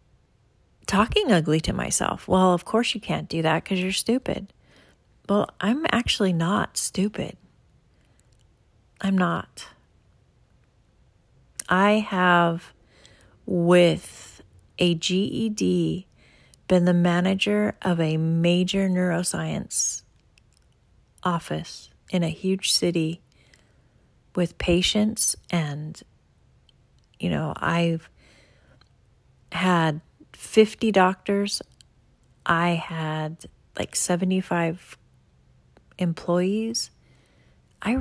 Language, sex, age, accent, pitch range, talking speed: English, female, 40-59, American, 155-195 Hz, 85 wpm